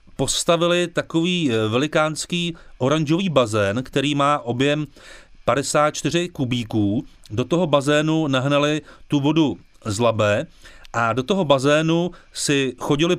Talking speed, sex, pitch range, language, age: 110 wpm, male, 125-160 Hz, Slovak, 40-59